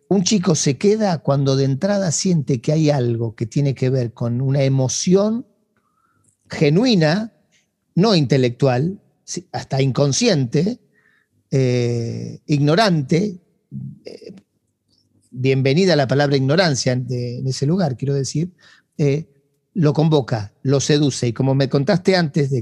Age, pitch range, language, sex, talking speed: 40-59, 130-170 Hz, Spanish, male, 120 wpm